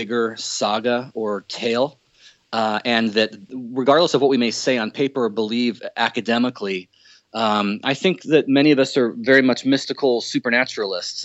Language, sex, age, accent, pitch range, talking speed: English, male, 30-49, American, 110-135 Hz, 160 wpm